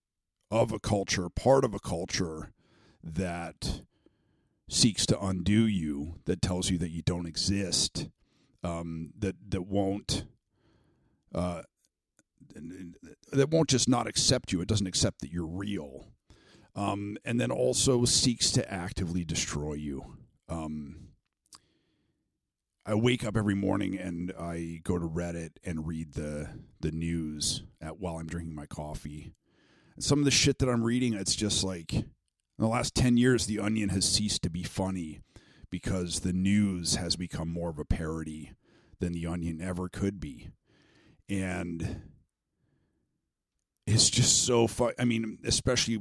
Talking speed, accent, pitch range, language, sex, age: 145 wpm, American, 85-110 Hz, English, male, 50-69